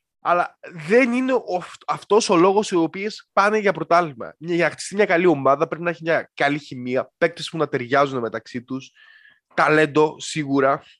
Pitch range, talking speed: 155-250 Hz, 170 wpm